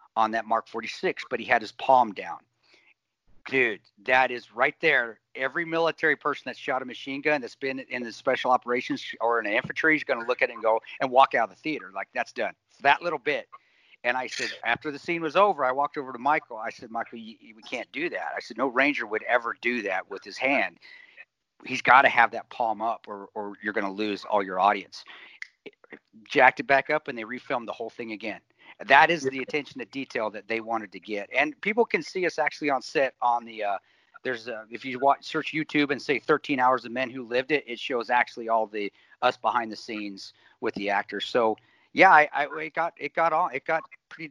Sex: male